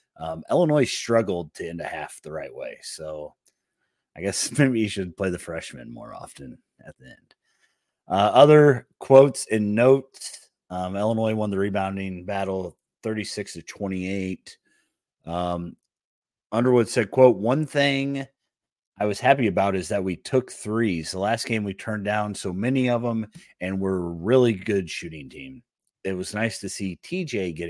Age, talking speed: 30-49, 165 wpm